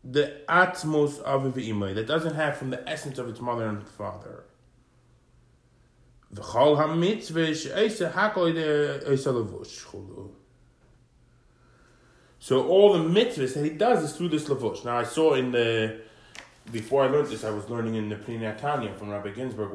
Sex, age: male, 20-39